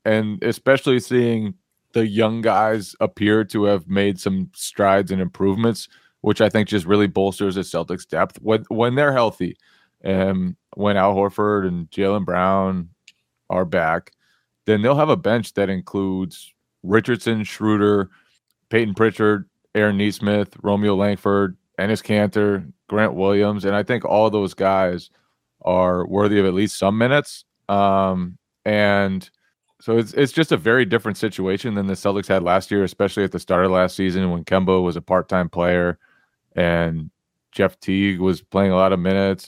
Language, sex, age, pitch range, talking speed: English, male, 30-49, 95-105 Hz, 160 wpm